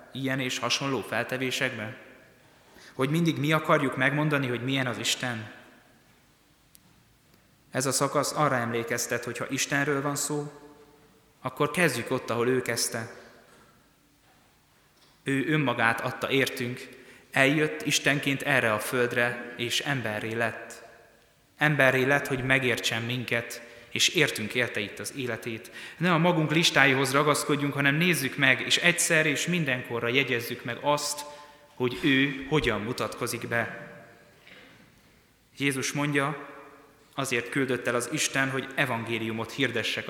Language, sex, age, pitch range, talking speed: Hungarian, male, 20-39, 120-145 Hz, 125 wpm